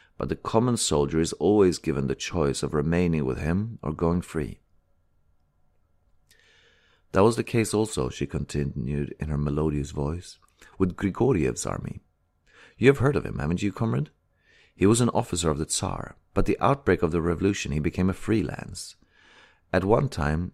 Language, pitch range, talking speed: English, 75-100 Hz, 170 wpm